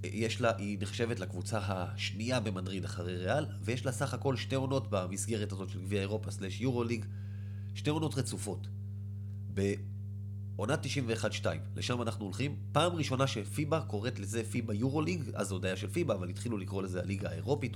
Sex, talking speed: male, 160 wpm